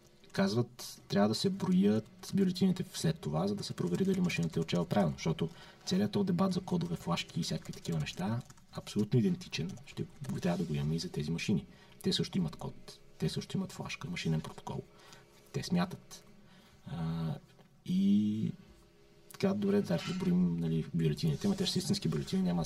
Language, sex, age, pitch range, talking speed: Bulgarian, male, 30-49, 150-190 Hz, 170 wpm